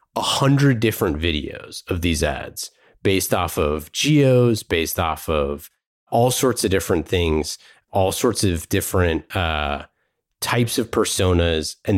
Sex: male